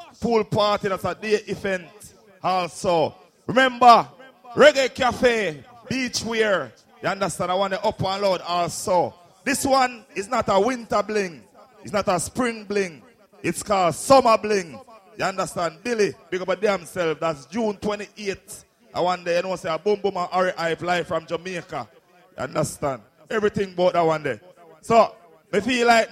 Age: 30-49